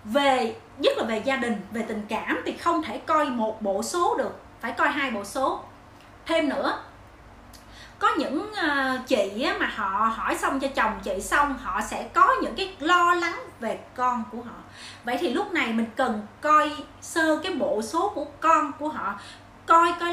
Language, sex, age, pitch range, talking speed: Vietnamese, female, 30-49, 270-355 Hz, 190 wpm